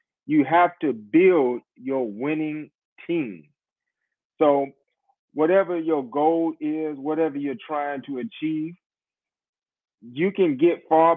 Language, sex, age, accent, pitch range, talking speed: English, male, 30-49, American, 135-175 Hz, 115 wpm